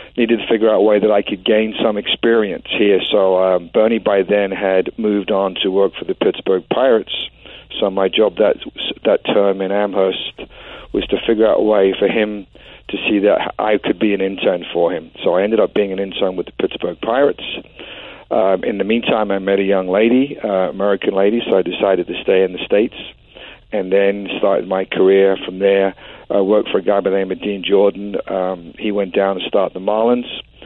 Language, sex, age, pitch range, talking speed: English, male, 50-69, 95-105 Hz, 215 wpm